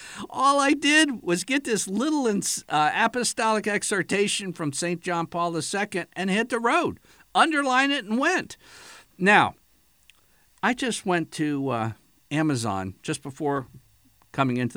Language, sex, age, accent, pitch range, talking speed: English, male, 50-69, American, 115-190 Hz, 140 wpm